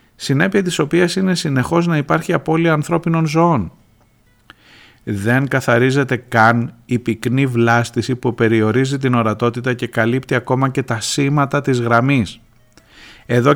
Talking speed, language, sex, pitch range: 130 wpm, Greek, male, 115-140 Hz